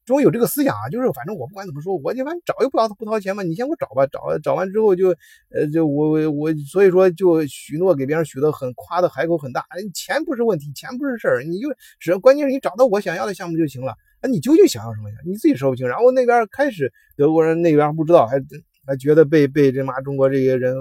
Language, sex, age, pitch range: Chinese, male, 20-39, 135-190 Hz